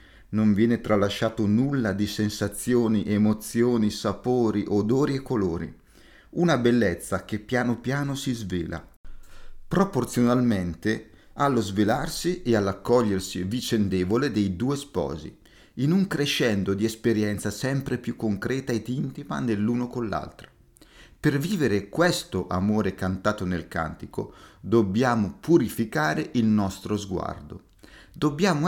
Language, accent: Italian, native